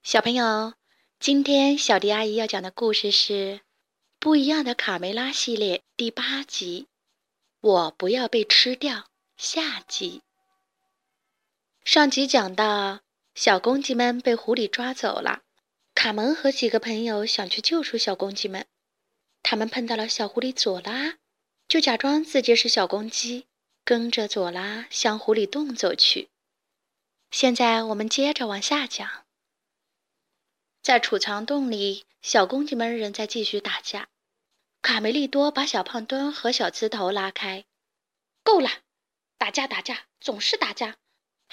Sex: female